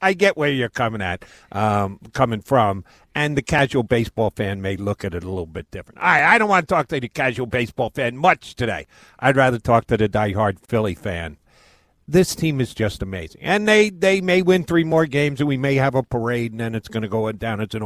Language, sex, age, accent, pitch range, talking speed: English, male, 50-69, American, 115-165 Hz, 240 wpm